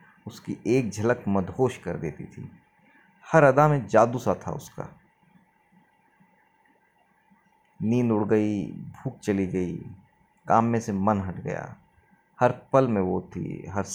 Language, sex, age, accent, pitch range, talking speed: Hindi, male, 30-49, native, 100-120 Hz, 140 wpm